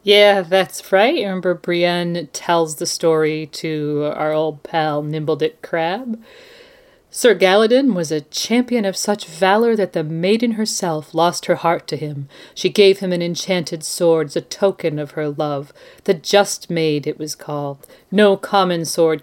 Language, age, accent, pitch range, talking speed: English, 40-59, American, 155-205 Hz, 160 wpm